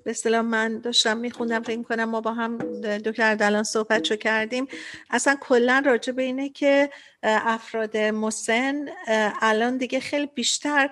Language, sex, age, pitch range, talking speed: Persian, female, 50-69, 220-255 Hz, 145 wpm